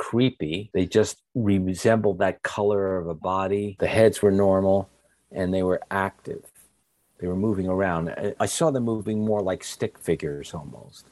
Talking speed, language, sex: 160 wpm, English, male